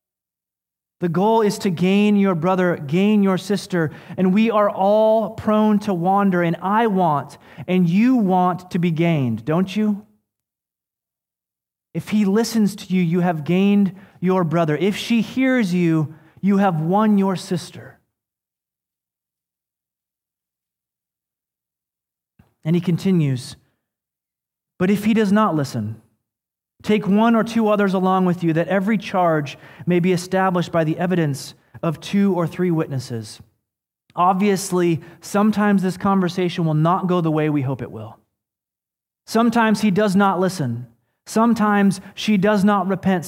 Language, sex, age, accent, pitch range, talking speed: English, male, 30-49, American, 155-200 Hz, 140 wpm